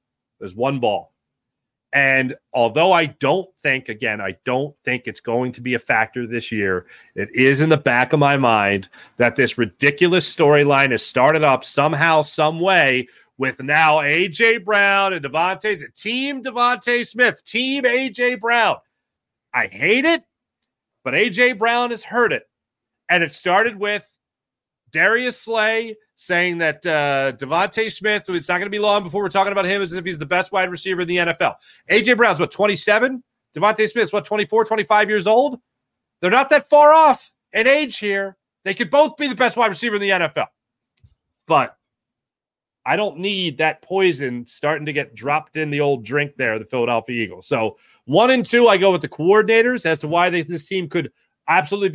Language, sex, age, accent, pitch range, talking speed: English, male, 30-49, American, 145-220 Hz, 180 wpm